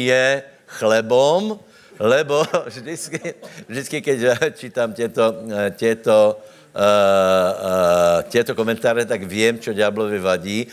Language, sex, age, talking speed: Slovak, male, 60-79, 90 wpm